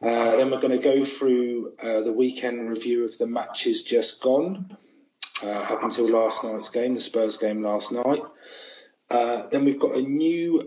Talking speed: 185 wpm